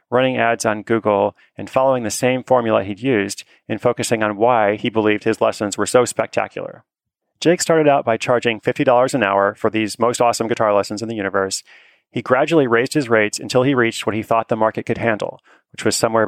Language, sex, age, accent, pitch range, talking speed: English, male, 30-49, American, 105-125 Hz, 210 wpm